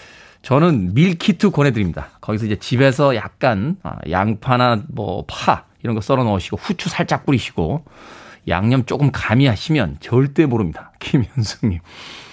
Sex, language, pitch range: male, Korean, 110-160 Hz